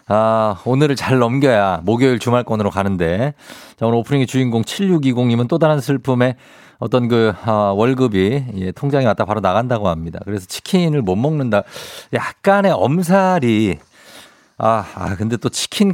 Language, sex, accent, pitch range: Korean, male, native, 105-170 Hz